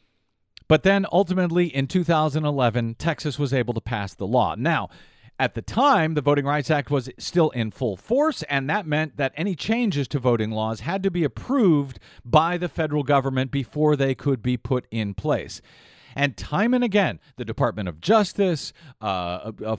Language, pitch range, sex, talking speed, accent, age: English, 125-185 Hz, male, 180 wpm, American, 40-59